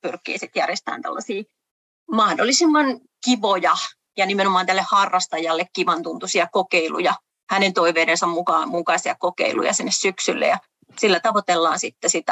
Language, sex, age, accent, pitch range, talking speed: Finnish, female, 30-49, native, 180-215 Hz, 110 wpm